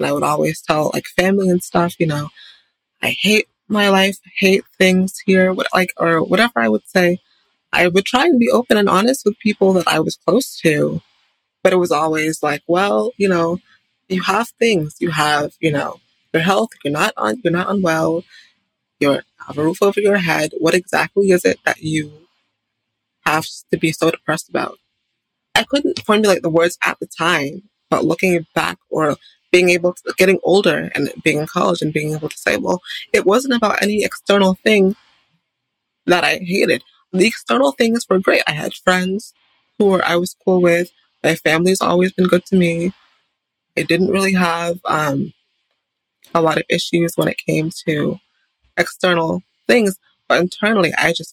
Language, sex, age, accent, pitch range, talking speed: English, female, 20-39, American, 165-195 Hz, 185 wpm